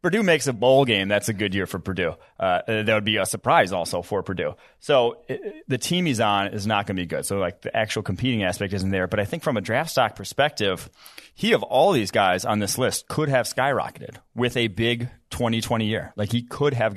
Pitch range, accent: 100-120 Hz, American